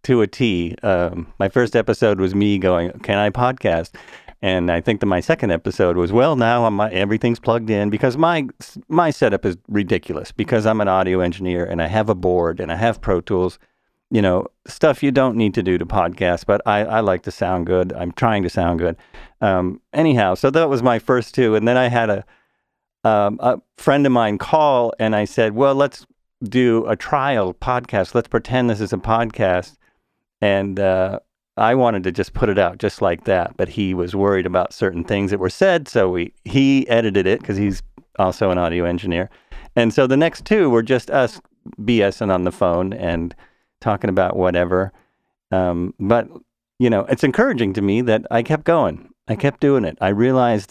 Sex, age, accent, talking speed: male, 50-69, American, 205 wpm